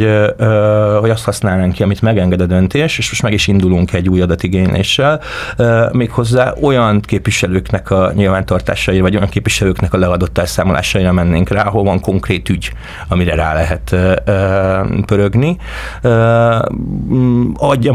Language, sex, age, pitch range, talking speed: Hungarian, male, 30-49, 95-105 Hz, 125 wpm